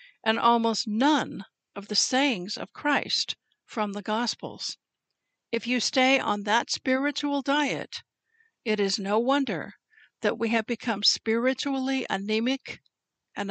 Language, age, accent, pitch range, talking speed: English, 60-79, American, 210-265 Hz, 130 wpm